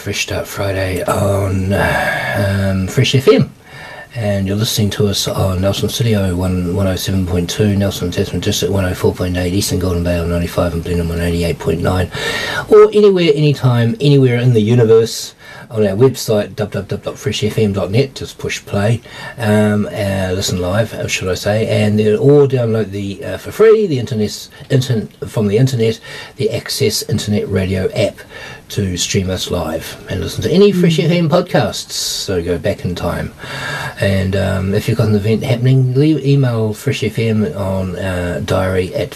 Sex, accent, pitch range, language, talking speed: male, Australian, 95-120 Hz, English, 155 wpm